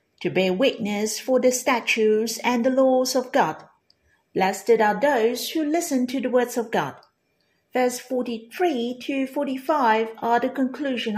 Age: 50-69